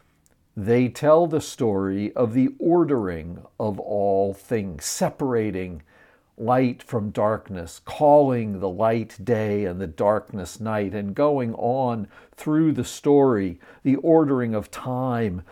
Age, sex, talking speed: 60-79, male, 125 wpm